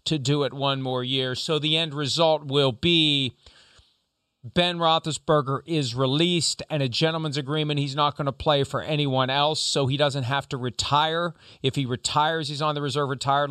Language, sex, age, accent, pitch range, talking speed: English, male, 40-59, American, 130-165 Hz, 185 wpm